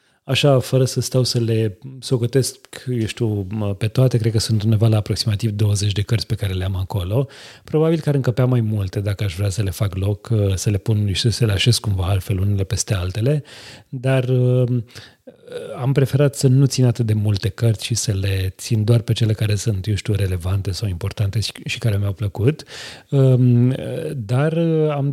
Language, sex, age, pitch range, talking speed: Romanian, male, 30-49, 105-135 Hz, 190 wpm